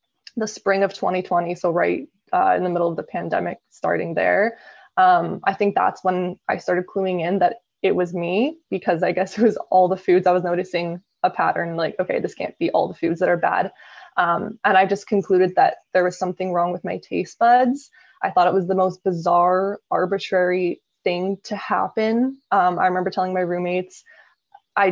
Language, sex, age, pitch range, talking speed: English, female, 20-39, 180-210 Hz, 200 wpm